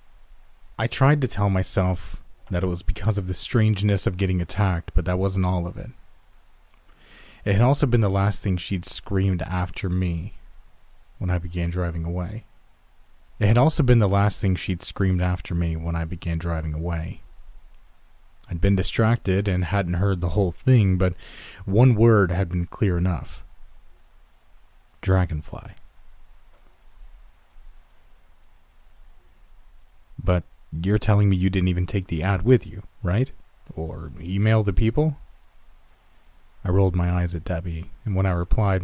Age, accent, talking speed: 30-49, American, 150 wpm